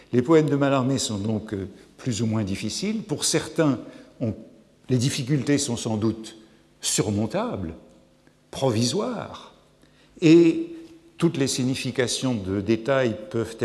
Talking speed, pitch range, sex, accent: 120 wpm, 110-145 Hz, male, French